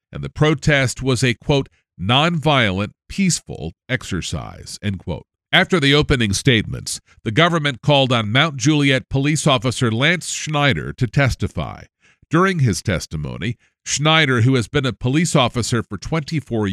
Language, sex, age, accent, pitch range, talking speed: English, male, 50-69, American, 115-155 Hz, 140 wpm